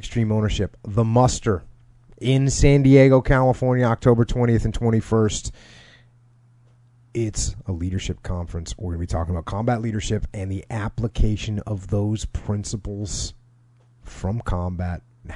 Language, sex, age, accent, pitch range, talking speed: English, male, 30-49, American, 95-120 Hz, 130 wpm